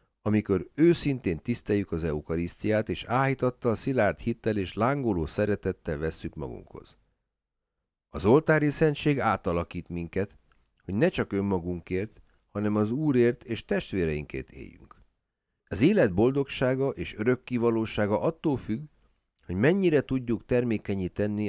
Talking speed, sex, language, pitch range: 115 wpm, male, Hungarian, 85-120 Hz